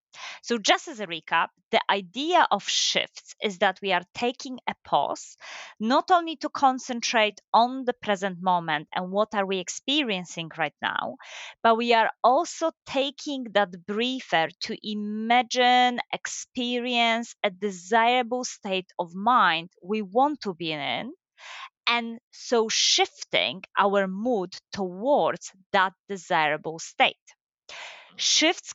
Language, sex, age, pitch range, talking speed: English, female, 30-49, 195-260 Hz, 125 wpm